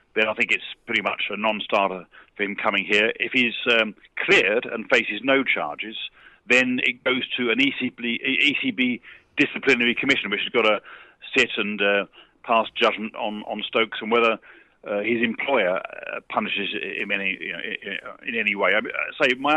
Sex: male